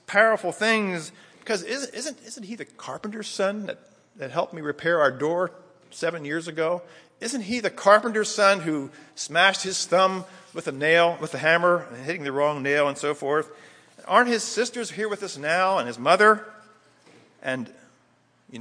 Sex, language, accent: male, English, American